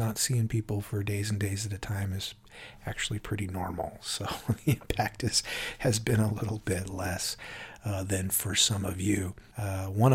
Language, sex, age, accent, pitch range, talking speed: English, male, 40-59, American, 100-115 Hz, 185 wpm